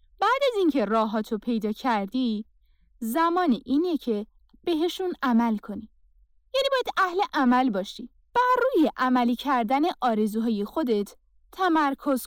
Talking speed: 115 wpm